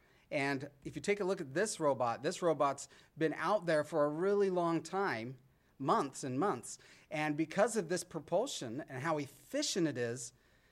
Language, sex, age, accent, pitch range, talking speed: English, male, 40-59, American, 130-160 Hz, 180 wpm